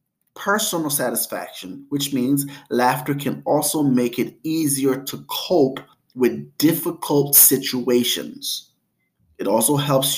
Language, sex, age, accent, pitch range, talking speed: English, male, 30-49, American, 120-145 Hz, 105 wpm